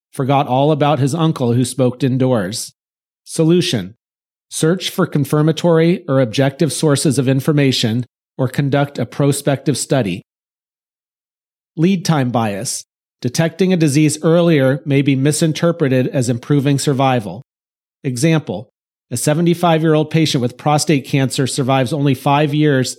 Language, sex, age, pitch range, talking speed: English, male, 40-59, 135-155 Hz, 120 wpm